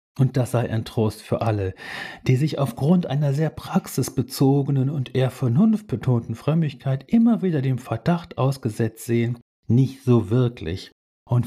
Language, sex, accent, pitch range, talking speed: German, male, German, 100-135 Hz, 145 wpm